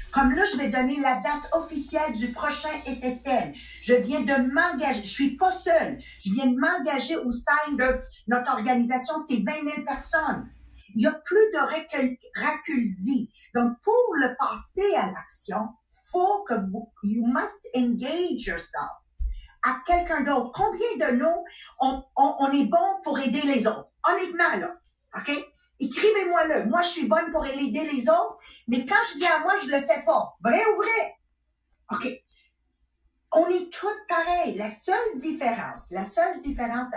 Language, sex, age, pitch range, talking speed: English, female, 50-69, 240-325 Hz, 165 wpm